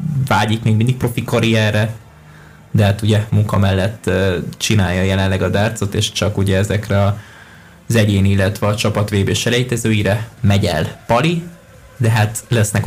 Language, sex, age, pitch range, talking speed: Hungarian, male, 20-39, 100-115 Hz, 140 wpm